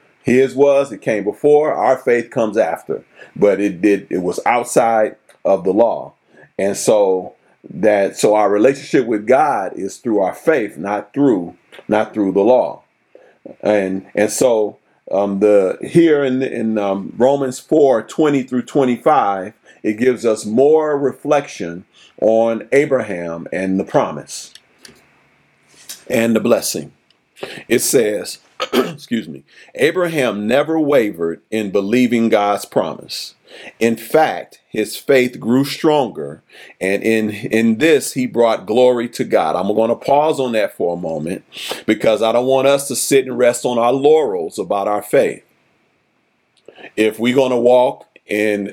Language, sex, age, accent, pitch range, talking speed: English, male, 40-59, American, 105-135 Hz, 145 wpm